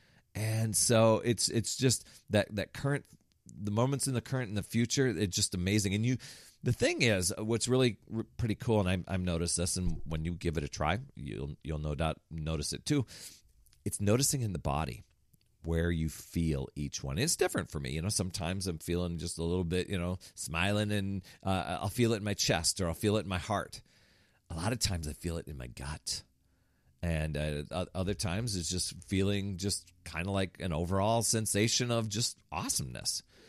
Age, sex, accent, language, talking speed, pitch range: 40-59, male, American, English, 210 wpm, 85-110 Hz